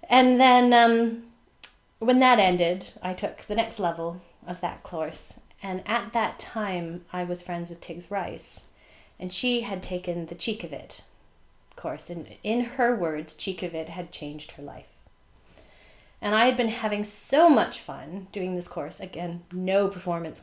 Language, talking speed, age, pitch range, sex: English, 170 wpm, 30-49, 170-230 Hz, female